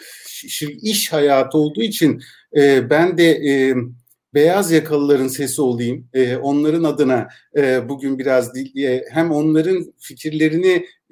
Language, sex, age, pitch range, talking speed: Turkish, male, 50-69, 140-170 Hz, 90 wpm